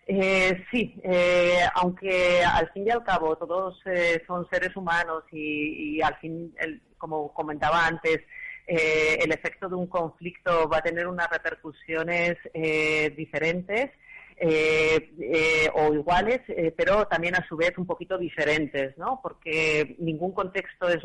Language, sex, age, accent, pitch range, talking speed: Spanish, female, 30-49, Spanish, 150-170 Hz, 150 wpm